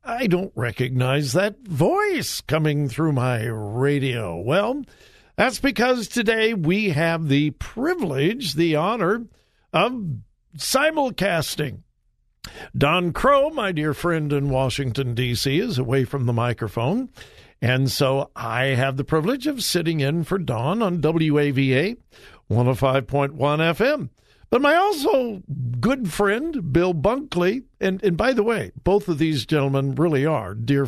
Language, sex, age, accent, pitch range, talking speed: English, male, 60-79, American, 135-205 Hz, 130 wpm